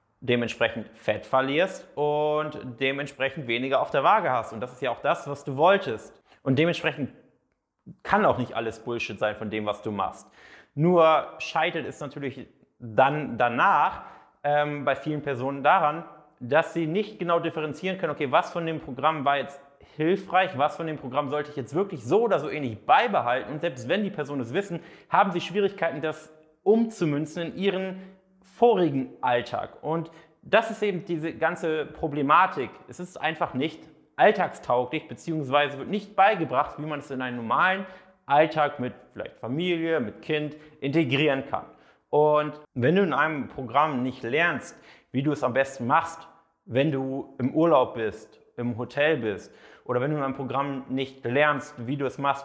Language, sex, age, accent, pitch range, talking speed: German, male, 30-49, German, 125-165 Hz, 170 wpm